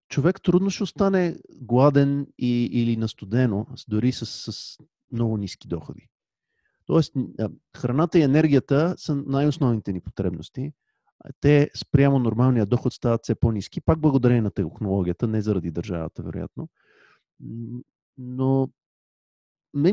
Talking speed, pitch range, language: 120 wpm, 105-140 Hz, Bulgarian